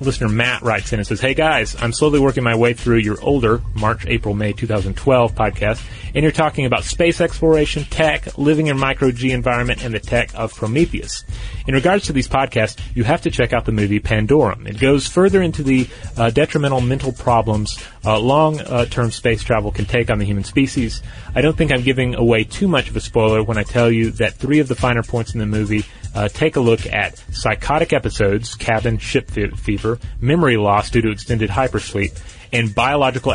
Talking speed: 200 wpm